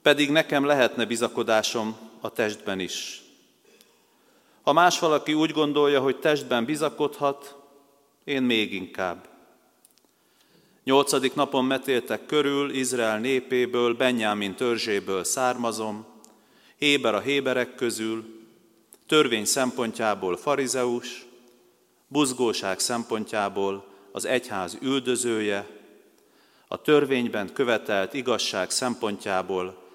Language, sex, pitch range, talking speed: Hungarian, male, 105-135 Hz, 90 wpm